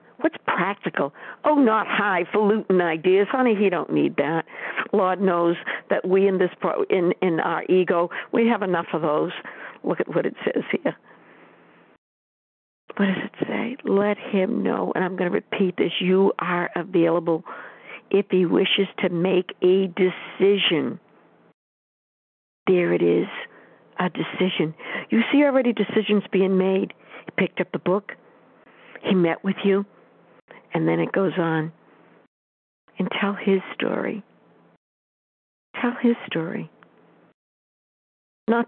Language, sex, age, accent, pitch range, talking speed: English, female, 60-79, American, 170-205 Hz, 135 wpm